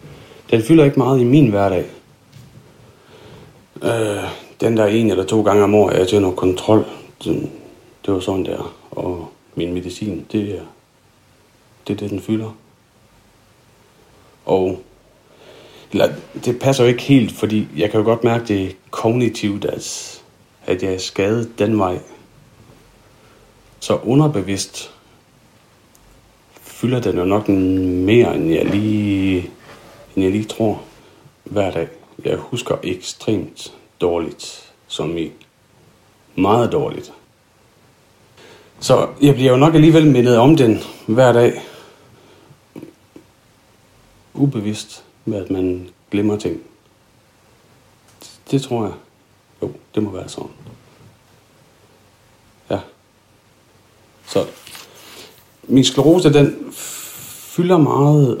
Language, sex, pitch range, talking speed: Danish, male, 100-125 Hz, 110 wpm